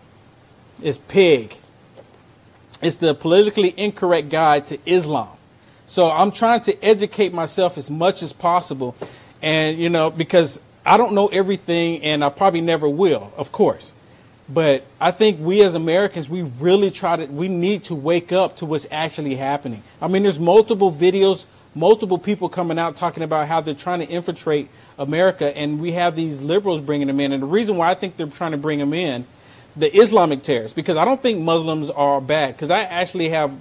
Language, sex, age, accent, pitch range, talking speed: English, male, 40-59, American, 140-180 Hz, 185 wpm